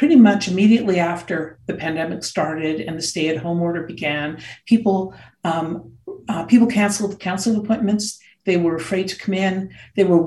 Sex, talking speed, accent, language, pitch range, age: female, 165 wpm, American, English, 165-200 Hz, 50-69